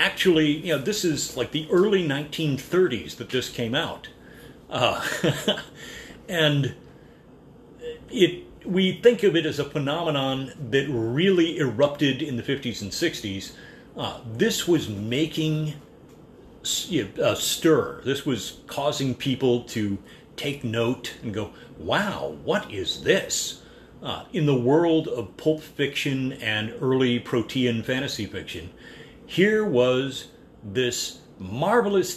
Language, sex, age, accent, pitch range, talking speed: English, male, 40-59, American, 120-160 Hz, 125 wpm